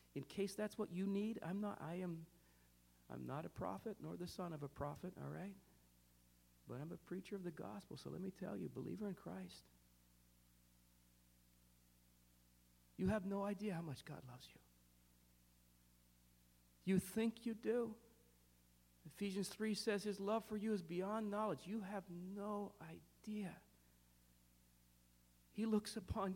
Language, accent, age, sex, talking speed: English, American, 50-69, male, 155 wpm